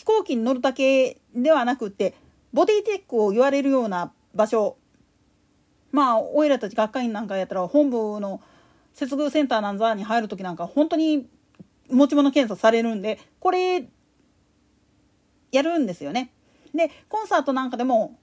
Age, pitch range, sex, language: 40-59, 240-335 Hz, female, Japanese